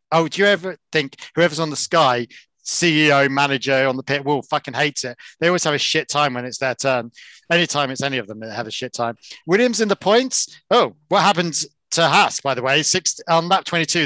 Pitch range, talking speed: 140-185 Hz, 230 wpm